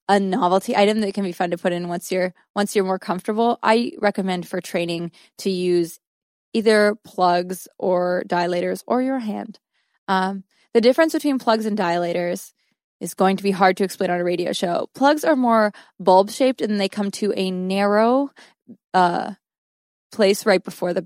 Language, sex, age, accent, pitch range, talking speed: English, female, 20-39, American, 185-225 Hz, 180 wpm